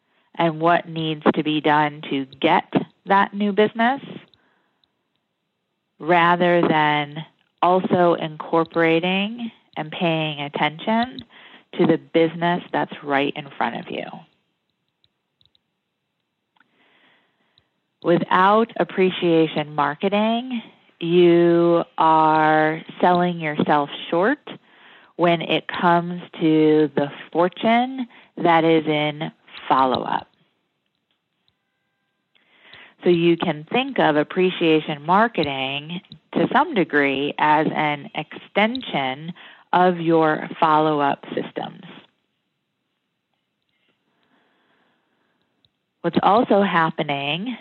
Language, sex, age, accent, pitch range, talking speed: English, female, 30-49, American, 155-185 Hz, 80 wpm